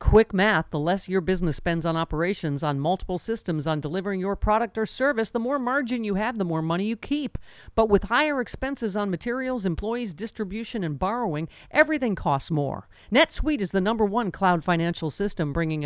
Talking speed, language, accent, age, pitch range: 190 wpm, English, American, 50-69, 165-235 Hz